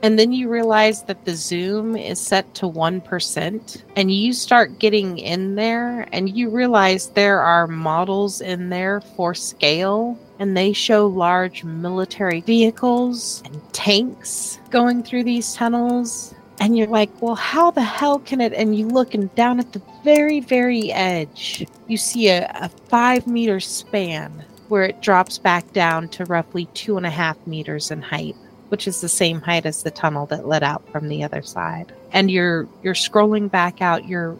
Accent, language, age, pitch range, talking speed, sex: American, English, 30-49, 175-225 Hz, 175 wpm, female